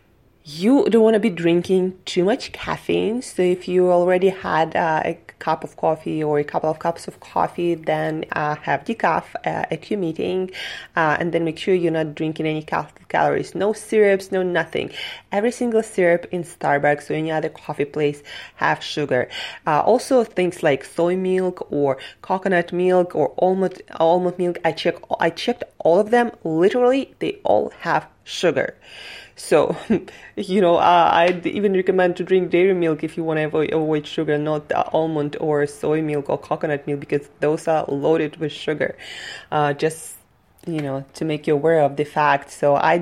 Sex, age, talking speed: female, 20-39, 175 wpm